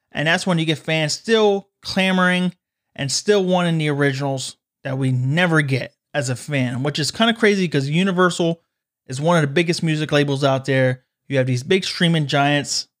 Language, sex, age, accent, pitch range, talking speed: English, male, 30-49, American, 145-190 Hz, 195 wpm